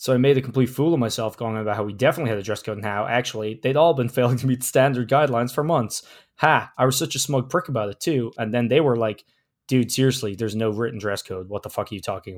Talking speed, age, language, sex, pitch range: 285 wpm, 20-39, English, male, 110-130 Hz